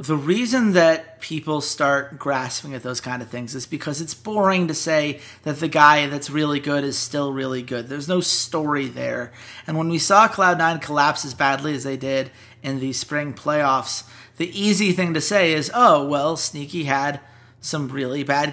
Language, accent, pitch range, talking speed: English, American, 135-165 Hz, 190 wpm